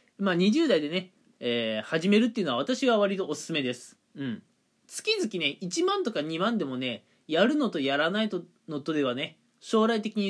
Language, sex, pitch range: Japanese, male, 160-255 Hz